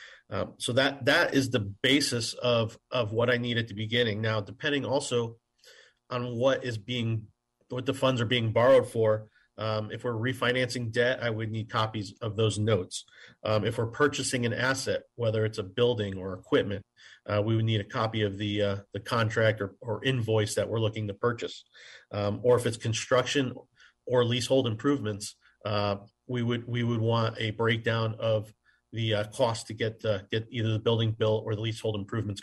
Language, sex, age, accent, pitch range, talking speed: English, male, 40-59, American, 110-125 Hz, 190 wpm